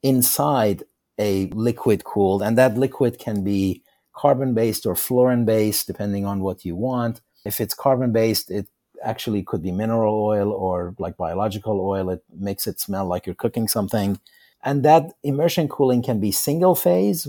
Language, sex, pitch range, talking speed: English, male, 95-120 Hz, 160 wpm